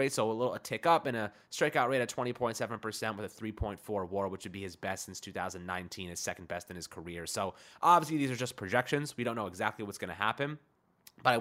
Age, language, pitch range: 20-39, English, 105-135 Hz